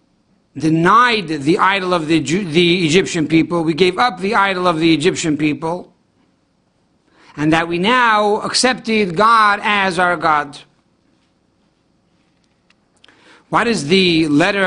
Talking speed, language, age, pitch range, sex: 125 wpm, English, 60-79, 165-205 Hz, male